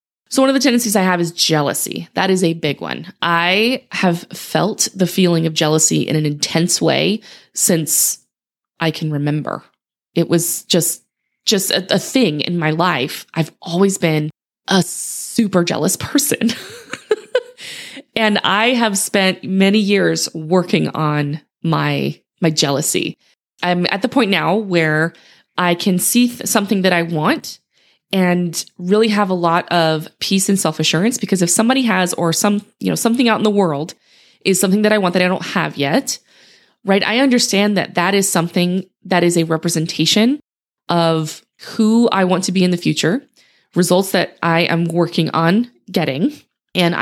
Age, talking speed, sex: 20-39, 170 wpm, female